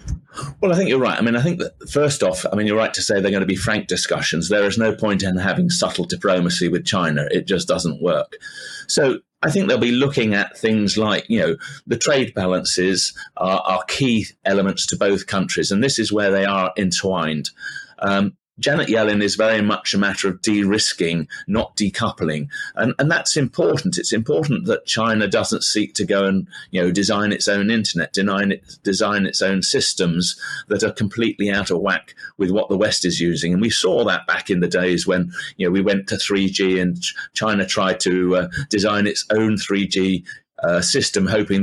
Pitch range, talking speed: 95-115 Hz, 200 wpm